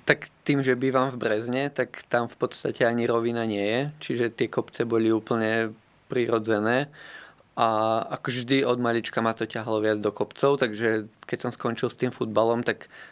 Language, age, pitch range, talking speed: Slovak, 20-39, 110-120 Hz, 180 wpm